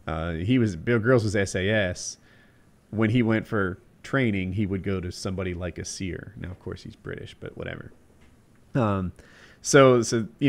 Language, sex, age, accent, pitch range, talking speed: English, male, 30-49, American, 95-120 Hz, 175 wpm